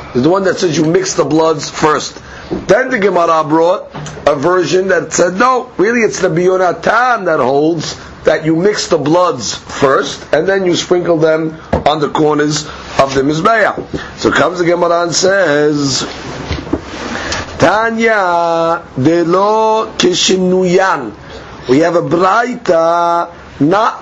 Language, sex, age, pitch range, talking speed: English, male, 50-69, 160-190 Hz, 140 wpm